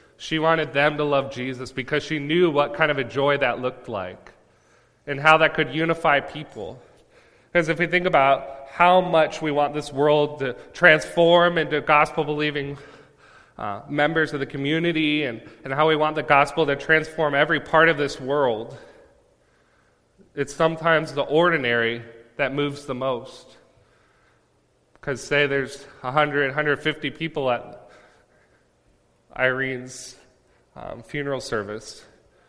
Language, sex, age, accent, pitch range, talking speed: English, male, 30-49, American, 125-150 Hz, 140 wpm